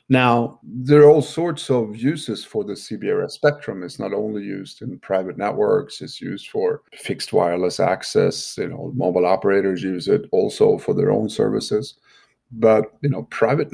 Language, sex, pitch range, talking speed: English, male, 95-145 Hz, 170 wpm